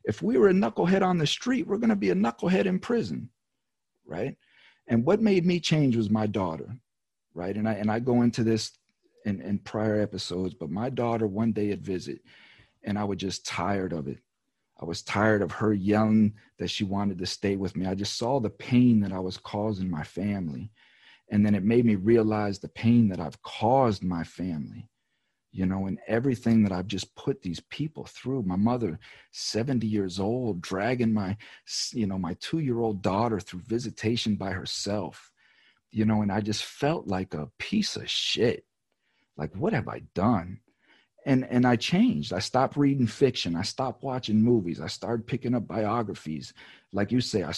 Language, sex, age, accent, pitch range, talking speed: English, male, 40-59, American, 95-120 Hz, 190 wpm